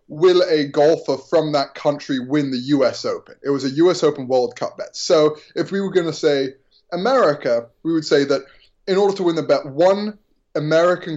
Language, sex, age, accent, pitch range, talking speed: English, male, 20-39, British, 140-180 Hz, 205 wpm